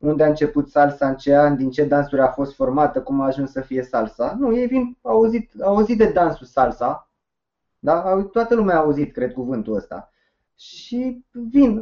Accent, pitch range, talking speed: native, 135-215 Hz, 200 wpm